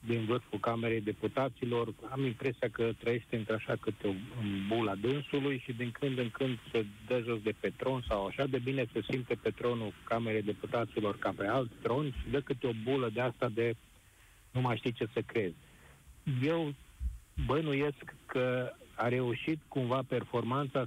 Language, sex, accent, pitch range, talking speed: Romanian, male, native, 115-140 Hz, 175 wpm